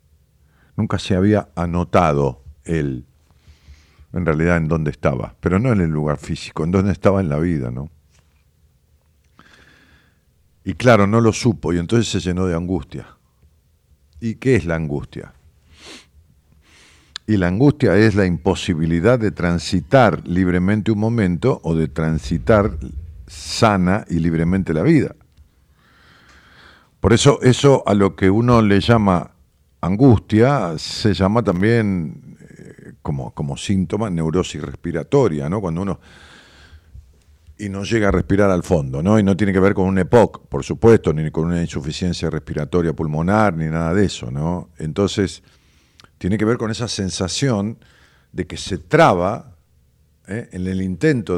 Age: 50-69